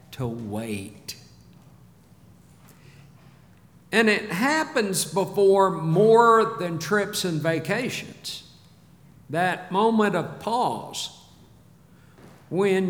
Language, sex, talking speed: English, male, 75 wpm